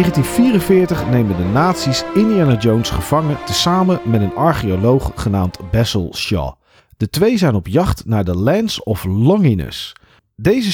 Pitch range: 95-160 Hz